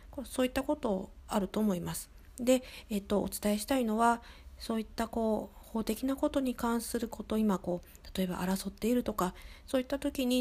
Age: 40-59